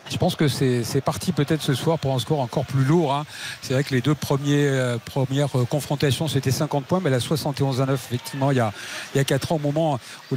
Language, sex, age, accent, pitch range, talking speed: French, male, 50-69, French, 150-205 Hz, 260 wpm